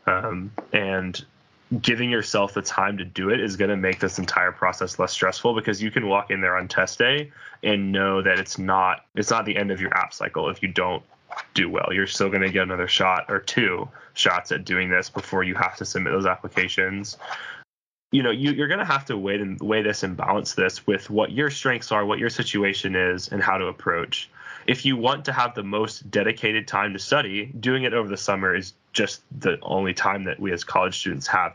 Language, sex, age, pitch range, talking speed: English, male, 10-29, 95-120 Hz, 230 wpm